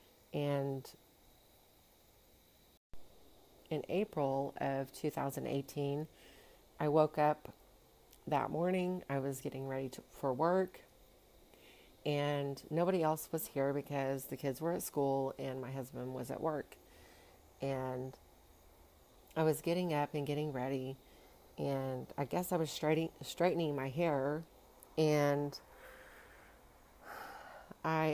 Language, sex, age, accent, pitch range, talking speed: English, female, 40-59, American, 135-160 Hz, 110 wpm